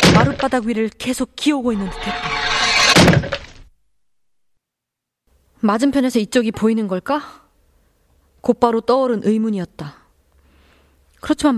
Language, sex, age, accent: Korean, female, 20-39, native